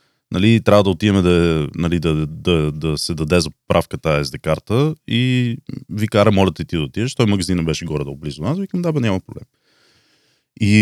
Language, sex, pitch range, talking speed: Bulgarian, male, 90-120 Hz, 205 wpm